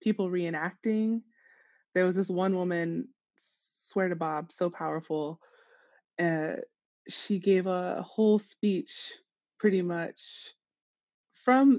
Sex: female